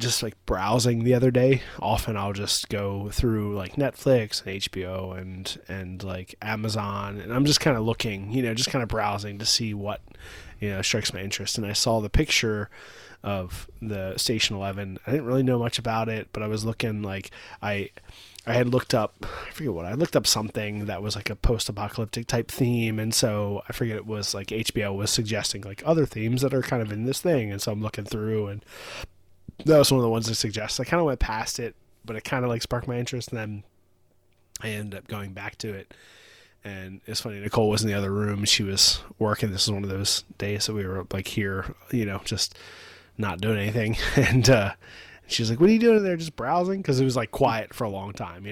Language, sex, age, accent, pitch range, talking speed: English, male, 20-39, American, 100-120 Hz, 235 wpm